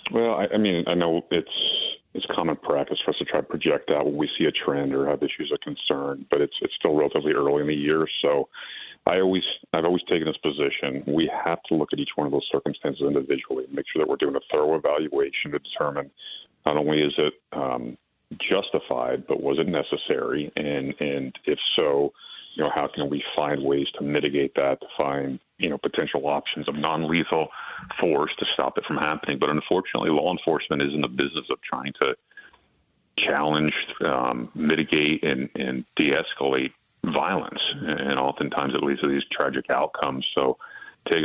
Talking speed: 190 wpm